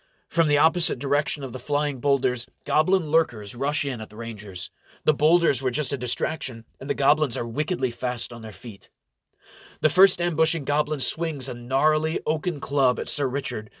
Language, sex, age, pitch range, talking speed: English, male, 30-49, 125-165 Hz, 185 wpm